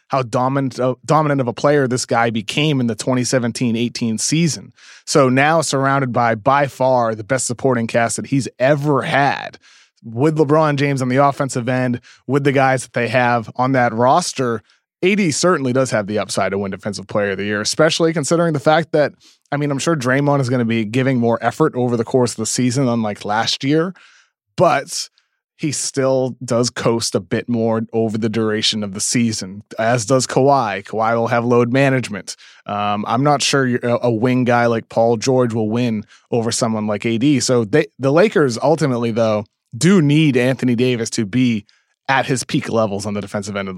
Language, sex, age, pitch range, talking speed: English, male, 30-49, 115-135 Hz, 190 wpm